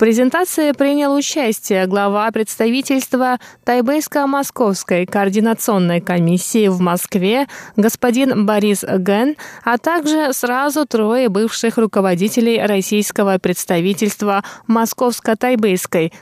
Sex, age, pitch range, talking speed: female, 20-39, 195-255 Hz, 95 wpm